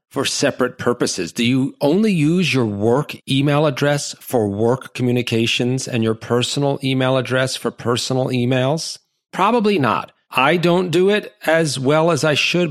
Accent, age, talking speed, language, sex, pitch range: American, 40-59, 155 wpm, English, male, 115-150 Hz